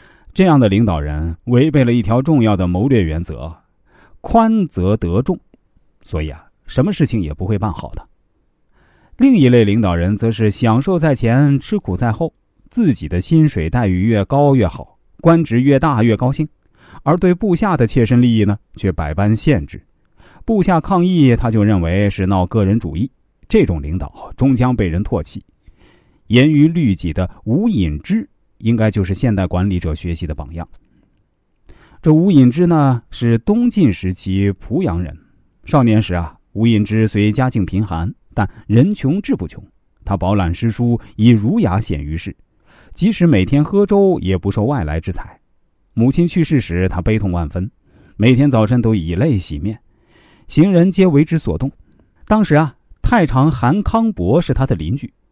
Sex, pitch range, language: male, 95-145 Hz, Chinese